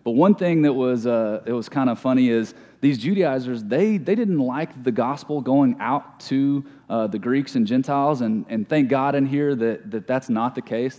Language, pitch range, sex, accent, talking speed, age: English, 120-160 Hz, male, American, 220 wpm, 30-49